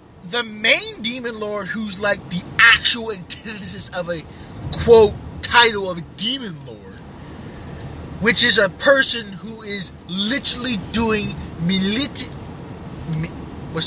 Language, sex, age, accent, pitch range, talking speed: English, male, 30-49, American, 155-210 Hz, 115 wpm